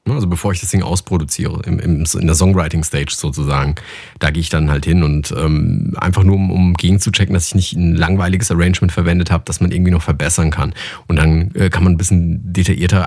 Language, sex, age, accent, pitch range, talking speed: German, male, 30-49, German, 90-110 Hz, 225 wpm